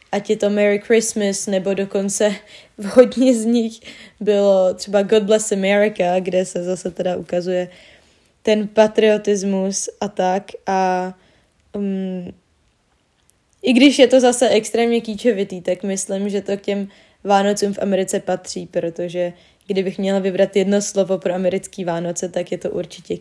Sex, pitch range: female, 195-215 Hz